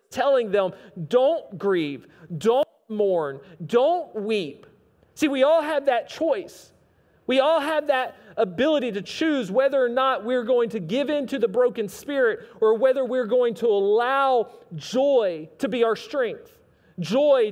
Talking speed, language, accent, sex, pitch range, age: 155 wpm, English, American, male, 215-285 Hz, 40-59